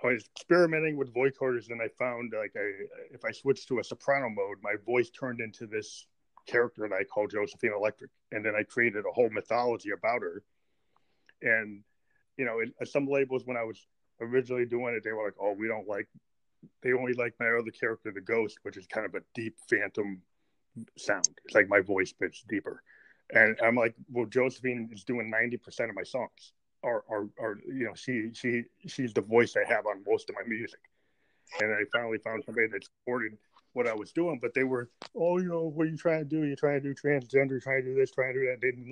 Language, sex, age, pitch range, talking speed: English, male, 30-49, 115-140 Hz, 220 wpm